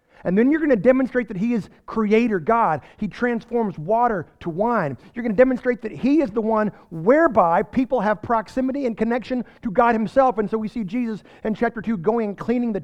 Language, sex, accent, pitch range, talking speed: English, male, American, 180-230 Hz, 215 wpm